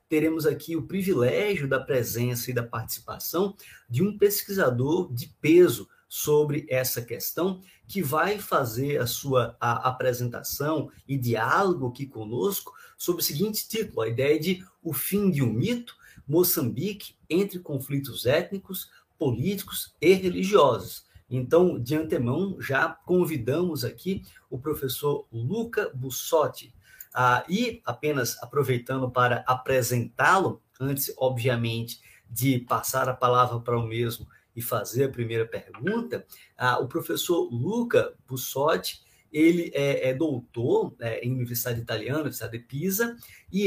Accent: Brazilian